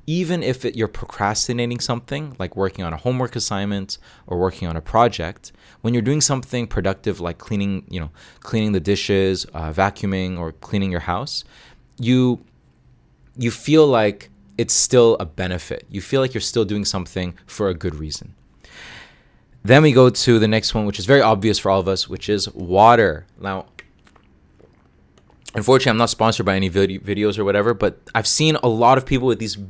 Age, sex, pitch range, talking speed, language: 20-39, male, 95-125 Hz, 185 wpm, English